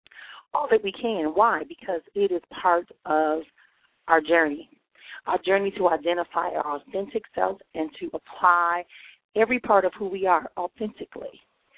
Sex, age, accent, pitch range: female, 40-59, American, 175-230 Hz